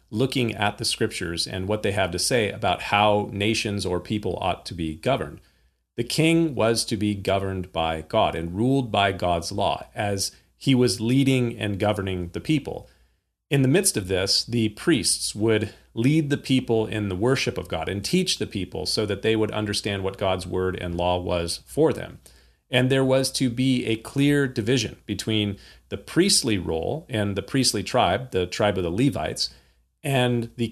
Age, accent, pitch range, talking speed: 40-59, American, 95-125 Hz, 190 wpm